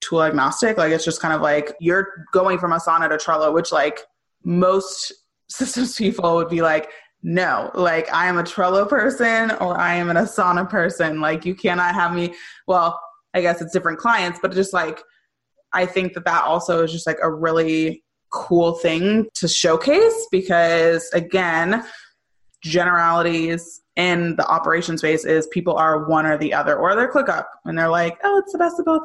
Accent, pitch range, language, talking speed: American, 160-190 Hz, English, 190 wpm